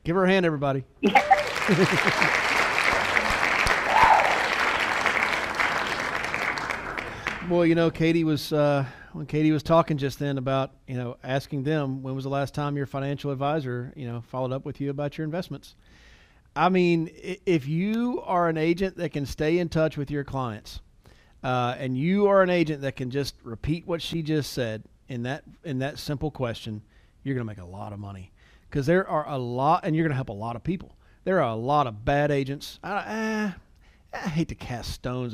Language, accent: English, American